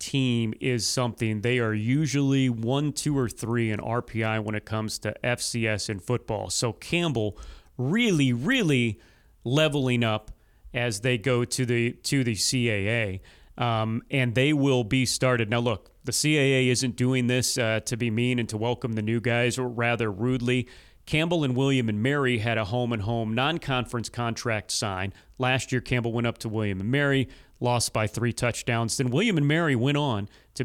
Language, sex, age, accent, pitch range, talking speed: English, male, 30-49, American, 115-135 Hz, 180 wpm